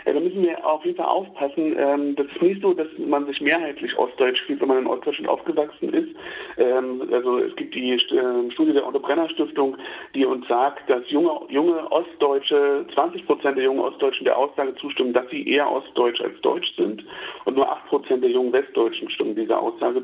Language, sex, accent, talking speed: German, male, German, 190 wpm